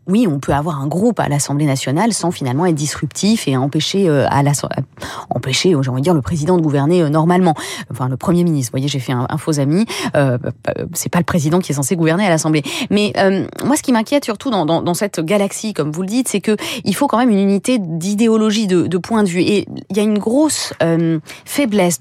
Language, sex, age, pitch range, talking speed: French, female, 20-39, 170-235 Hz, 235 wpm